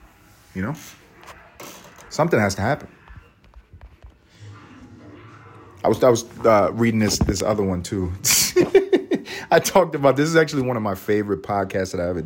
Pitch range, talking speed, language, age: 100-130 Hz, 150 wpm, English, 30-49